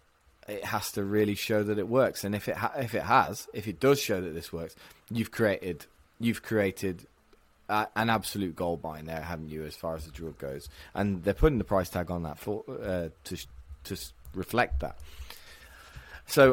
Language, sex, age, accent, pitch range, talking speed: English, male, 20-39, British, 85-115 Hz, 195 wpm